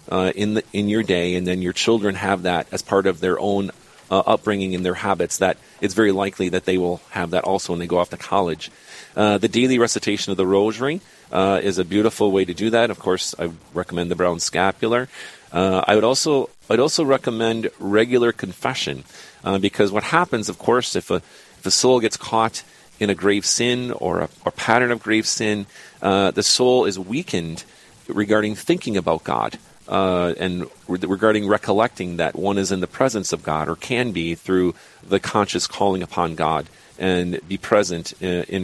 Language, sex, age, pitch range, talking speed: English, male, 40-59, 90-110 Hz, 200 wpm